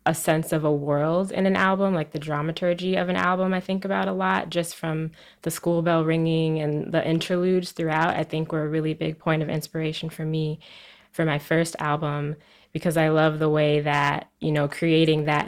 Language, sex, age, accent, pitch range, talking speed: English, female, 20-39, American, 150-165 Hz, 210 wpm